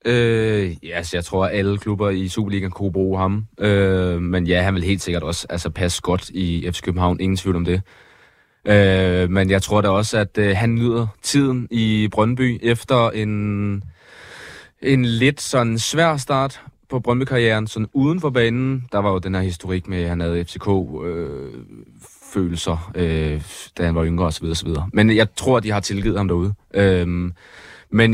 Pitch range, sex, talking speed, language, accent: 95-110 Hz, male, 185 wpm, Danish, native